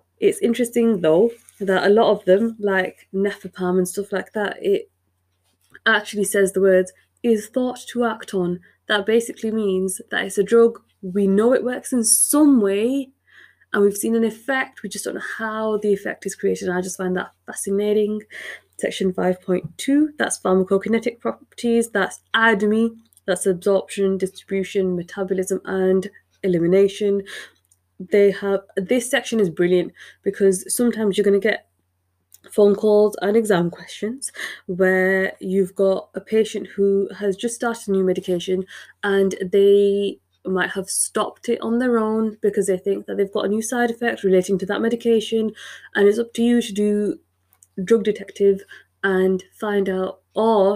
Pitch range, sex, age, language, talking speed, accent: 190-220 Hz, female, 20-39, English, 160 wpm, British